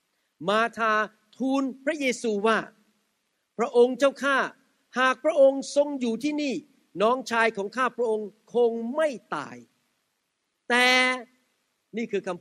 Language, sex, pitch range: Thai, male, 205-265 Hz